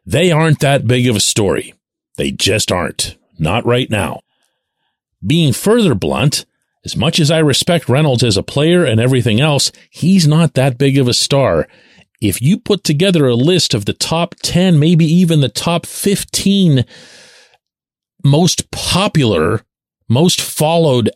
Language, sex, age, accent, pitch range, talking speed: English, male, 40-59, American, 120-170 Hz, 155 wpm